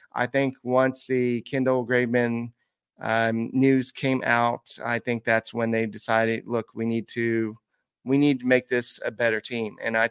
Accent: American